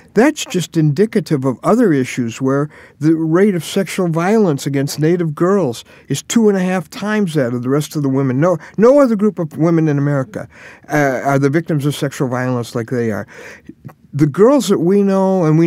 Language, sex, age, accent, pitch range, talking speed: English, male, 50-69, American, 135-205 Hz, 205 wpm